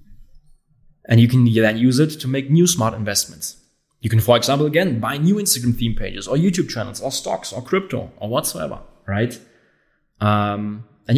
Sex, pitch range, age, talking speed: male, 105-130 Hz, 20-39, 175 wpm